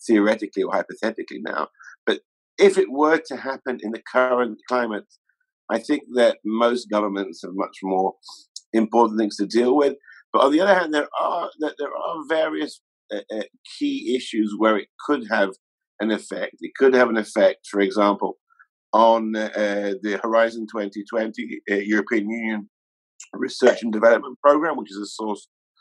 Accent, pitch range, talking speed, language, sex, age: British, 100-145 Hz, 165 wpm, English, male, 50-69